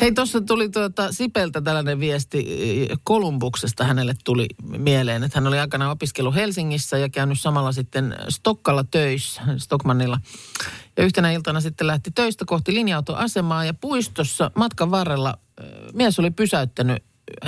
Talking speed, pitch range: 135 wpm, 130-185 Hz